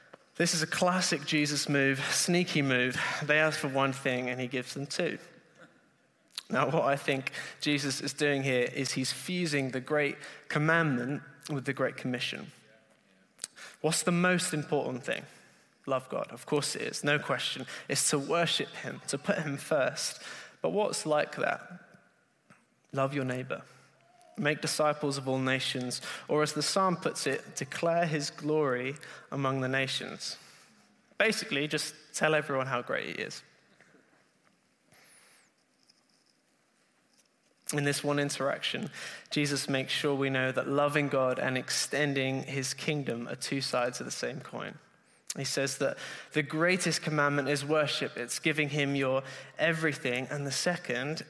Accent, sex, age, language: British, male, 20-39, English